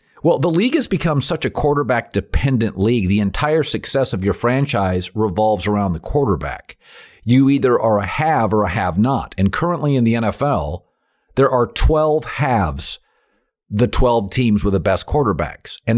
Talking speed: 165 wpm